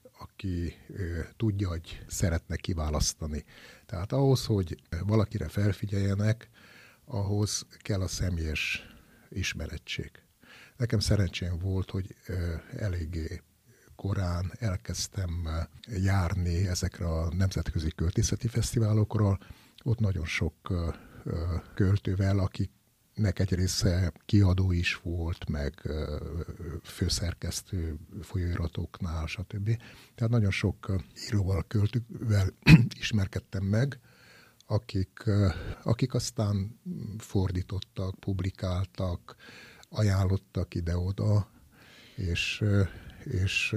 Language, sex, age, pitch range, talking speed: Hungarian, male, 60-79, 90-105 Hz, 80 wpm